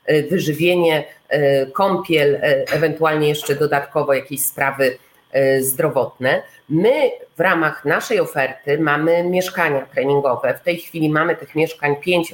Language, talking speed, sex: Polish, 110 wpm, female